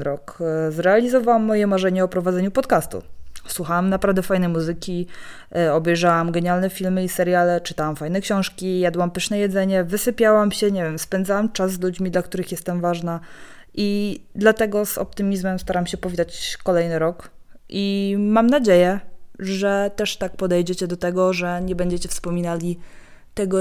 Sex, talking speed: female, 145 wpm